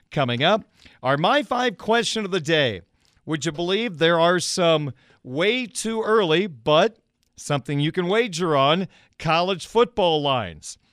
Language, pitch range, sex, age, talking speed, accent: English, 140-195 Hz, male, 40-59, 150 wpm, American